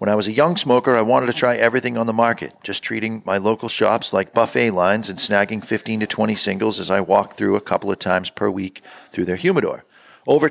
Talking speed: 240 wpm